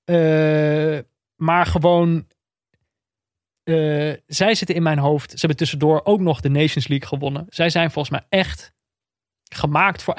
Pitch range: 140-170 Hz